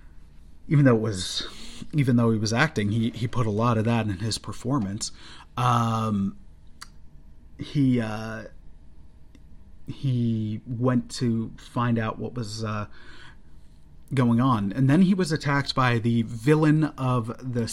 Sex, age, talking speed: male, 30-49, 140 wpm